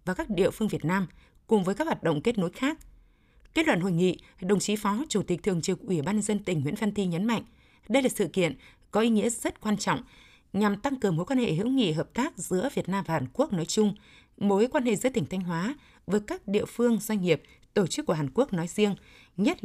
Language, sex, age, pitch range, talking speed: Vietnamese, female, 20-39, 175-225 Hz, 255 wpm